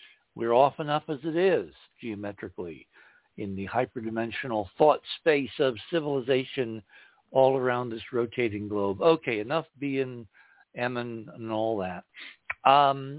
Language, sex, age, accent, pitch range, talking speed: English, male, 60-79, American, 110-150 Hz, 130 wpm